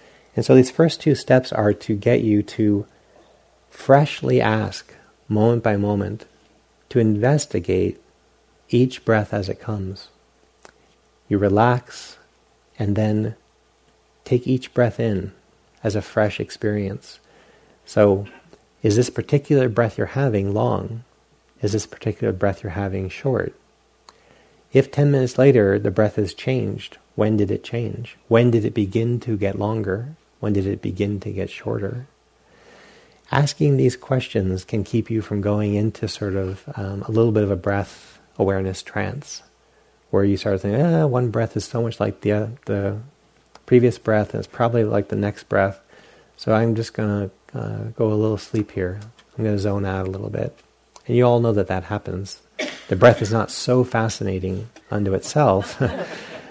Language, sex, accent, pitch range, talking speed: English, male, American, 100-120 Hz, 160 wpm